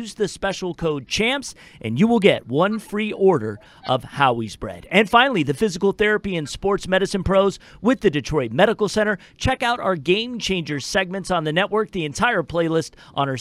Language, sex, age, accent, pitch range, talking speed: English, male, 40-59, American, 155-200 Hz, 190 wpm